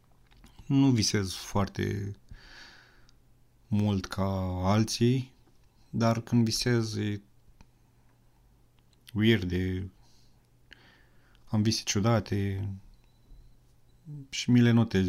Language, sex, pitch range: Romanian, male, 100-120 Hz